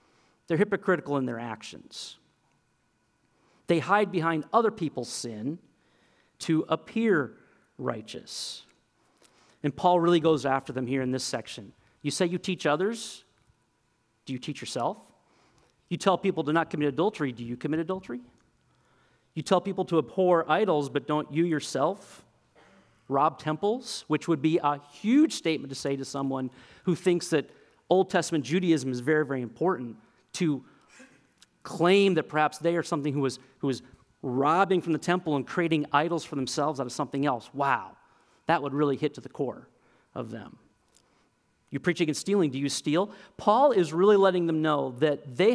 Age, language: 40-59, English